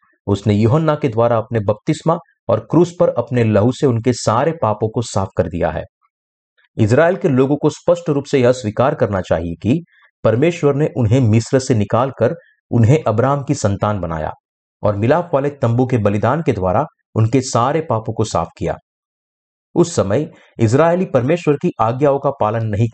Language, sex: Hindi, male